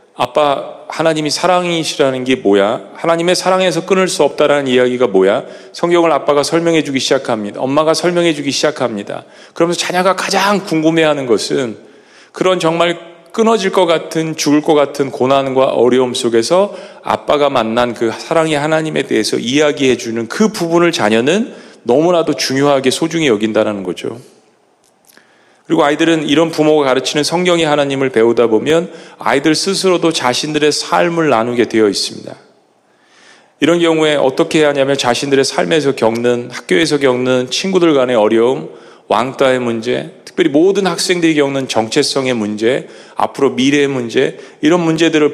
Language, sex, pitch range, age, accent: Korean, male, 130-170 Hz, 40-59, native